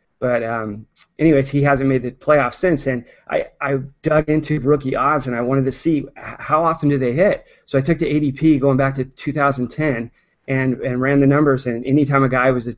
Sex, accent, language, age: male, American, English, 30-49